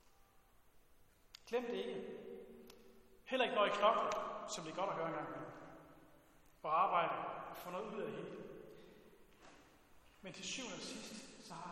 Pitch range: 190-235 Hz